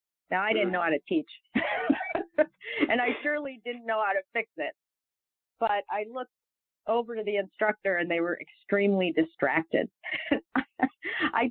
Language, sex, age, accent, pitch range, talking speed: English, female, 40-59, American, 180-235 Hz, 150 wpm